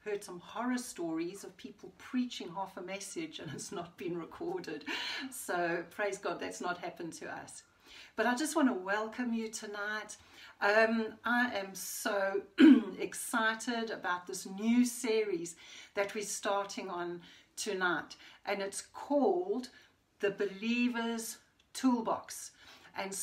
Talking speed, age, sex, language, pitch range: 135 wpm, 60-79, female, English, 200-255 Hz